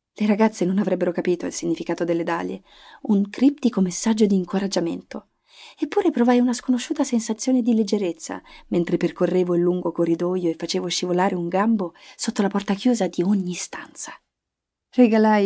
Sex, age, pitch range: female, 30-49, 180-230 Hz